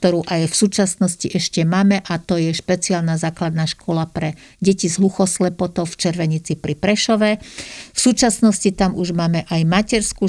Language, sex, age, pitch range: Slovak, female, 50-69, 170-195 Hz